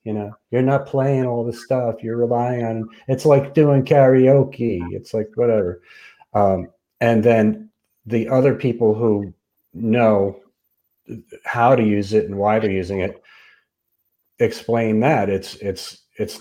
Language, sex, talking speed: English, male, 145 wpm